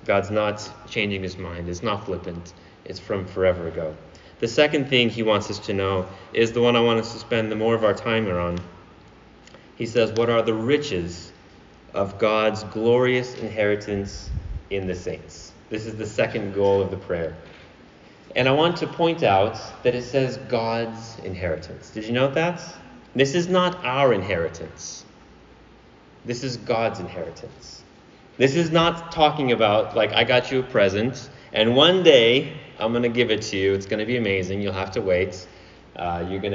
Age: 30-49